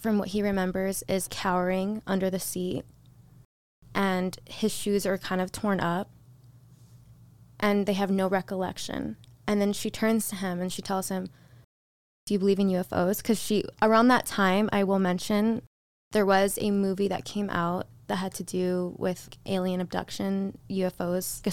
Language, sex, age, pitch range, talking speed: English, female, 20-39, 135-200 Hz, 170 wpm